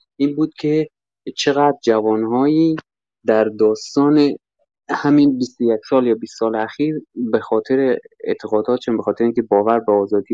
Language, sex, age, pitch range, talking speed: Persian, male, 20-39, 105-140 Hz, 140 wpm